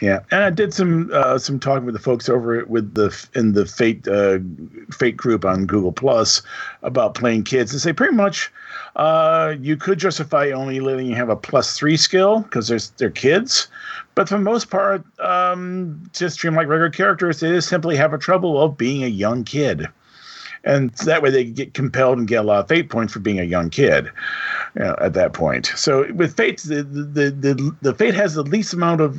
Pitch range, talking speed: 115-165 Hz, 210 wpm